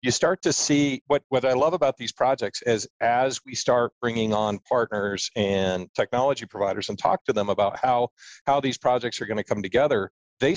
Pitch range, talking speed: 105-130 Hz, 200 wpm